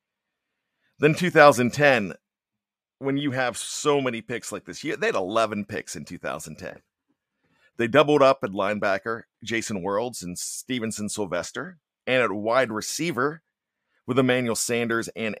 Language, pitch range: English, 110-145 Hz